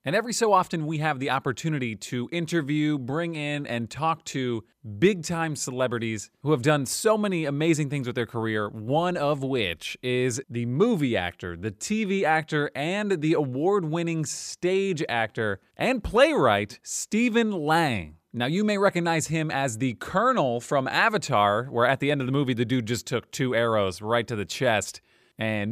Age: 30-49